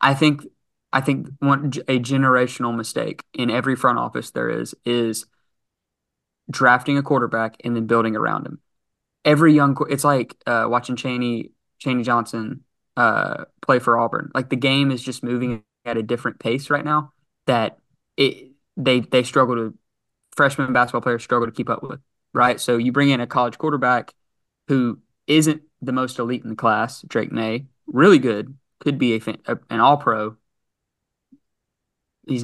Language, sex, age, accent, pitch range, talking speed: English, male, 20-39, American, 115-135 Hz, 165 wpm